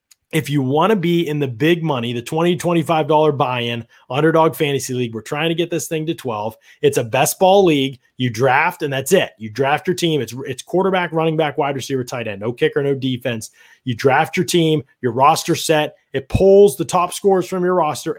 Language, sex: English, male